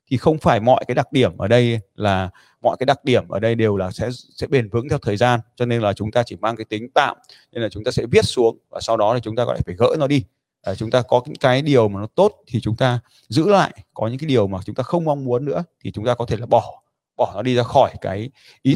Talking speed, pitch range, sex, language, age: 300 wpm, 105-130 Hz, male, Vietnamese, 20-39